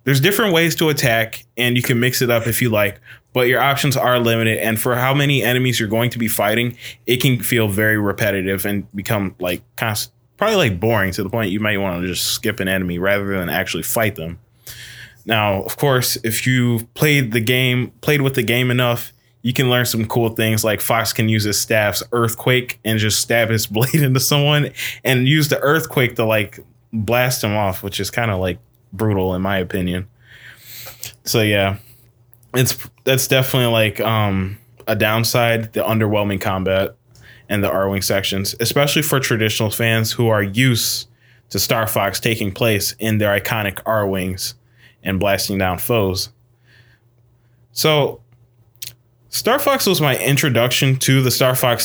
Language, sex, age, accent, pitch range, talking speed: English, male, 20-39, American, 110-125 Hz, 180 wpm